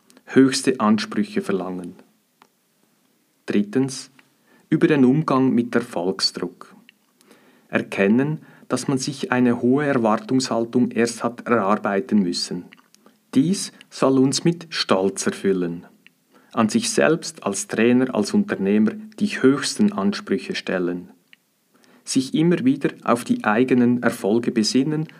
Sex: male